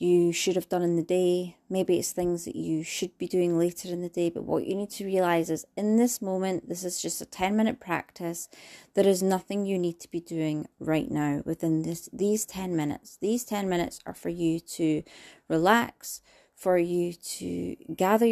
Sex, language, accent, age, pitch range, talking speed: female, English, British, 30-49, 175-220 Hz, 205 wpm